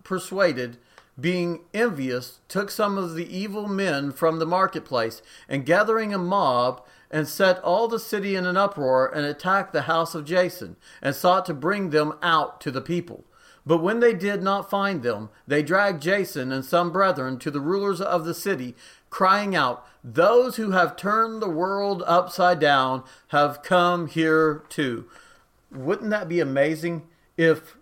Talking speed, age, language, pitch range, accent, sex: 165 wpm, 40-59, English, 160-200 Hz, American, male